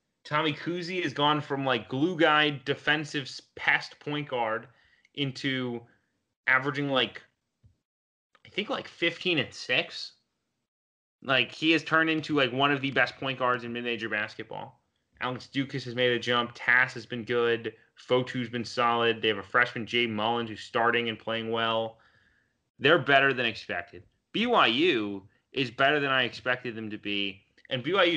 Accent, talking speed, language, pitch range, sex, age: American, 160 wpm, English, 120-145 Hz, male, 20-39